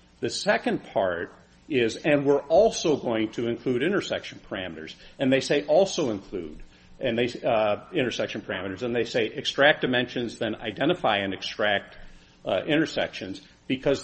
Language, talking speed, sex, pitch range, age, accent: English, 145 wpm, male, 110-150 Hz, 50-69, American